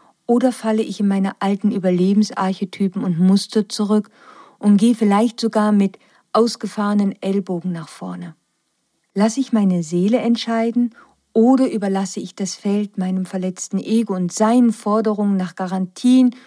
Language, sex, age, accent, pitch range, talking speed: German, female, 50-69, German, 185-225 Hz, 135 wpm